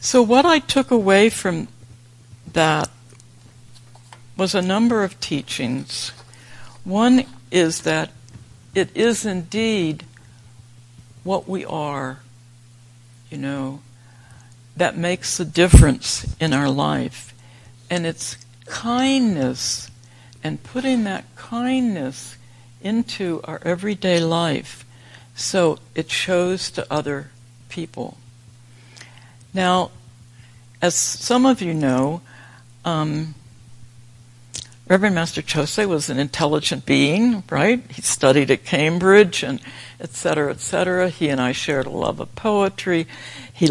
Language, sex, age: English, female, 60-79